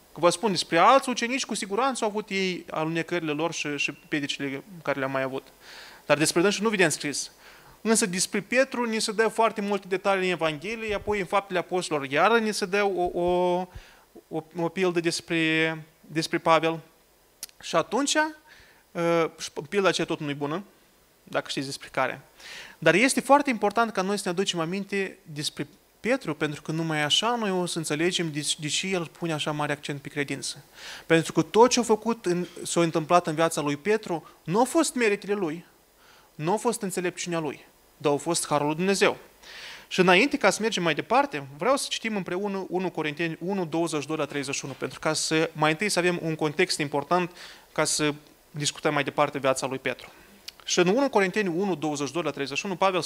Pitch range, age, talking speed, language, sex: 155-205 Hz, 20-39, 185 wpm, Romanian, male